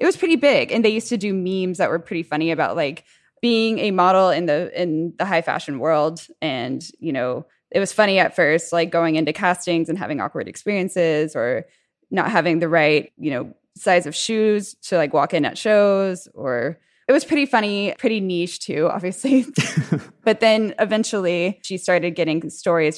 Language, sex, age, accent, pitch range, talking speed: English, female, 20-39, American, 160-205 Hz, 195 wpm